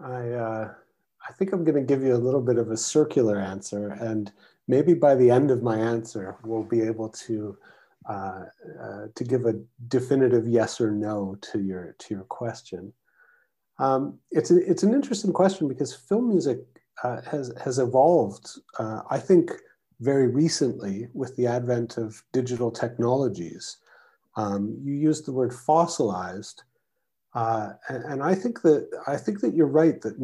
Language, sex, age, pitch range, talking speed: English, male, 40-59, 115-155 Hz, 165 wpm